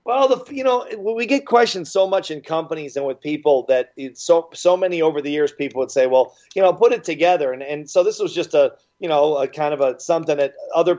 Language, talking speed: English, 250 wpm